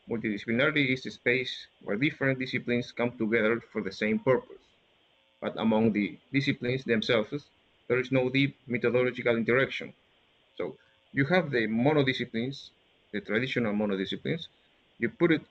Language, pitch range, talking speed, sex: English, 115-135 Hz, 145 wpm, male